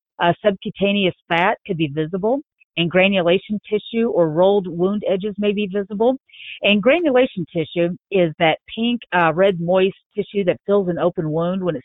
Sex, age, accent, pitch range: female, 50-69, American, 165-200 Hz